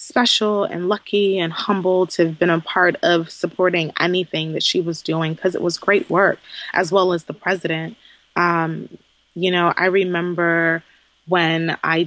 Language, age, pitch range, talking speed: English, 20-39, 165-185 Hz, 170 wpm